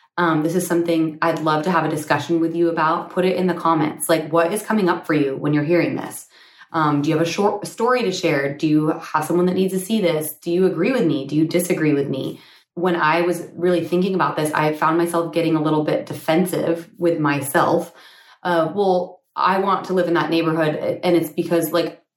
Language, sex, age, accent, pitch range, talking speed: English, female, 20-39, American, 150-175 Hz, 235 wpm